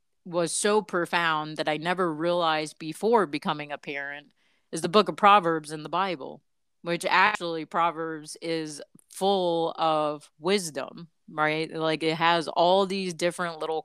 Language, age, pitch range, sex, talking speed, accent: English, 30-49, 155-185 Hz, female, 145 wpm, American